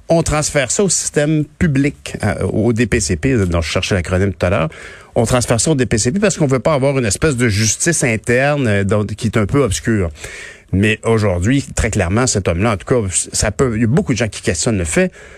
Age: 50-69